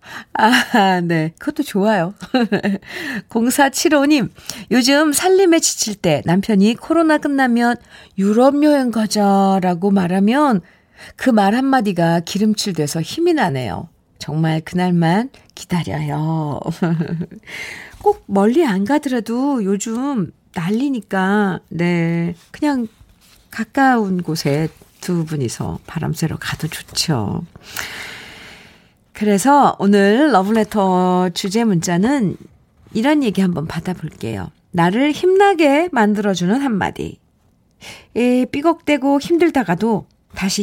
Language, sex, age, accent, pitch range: Korean, female, 50-69, native, 175-265 Hz